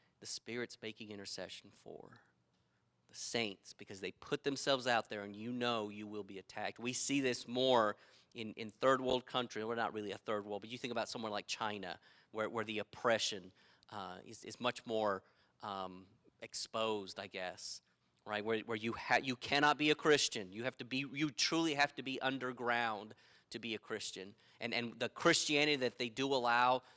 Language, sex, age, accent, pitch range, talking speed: English, male, 30-49, American, 110-130 Hz, 190 wpm